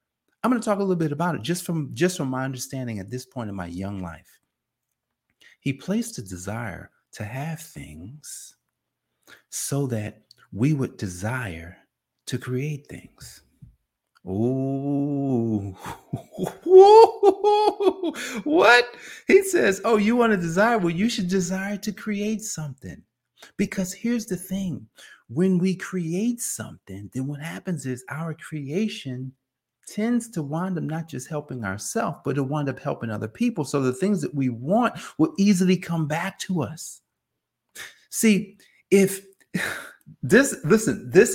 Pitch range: 120-195 Hz